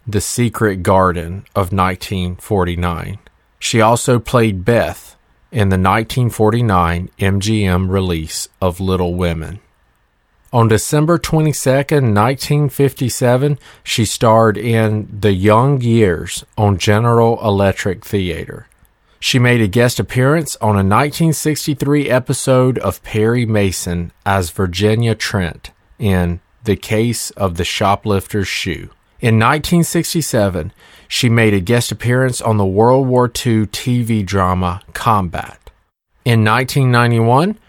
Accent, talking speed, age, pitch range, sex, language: American, 110 wpm, 40-59, 95-125 Hz, male, English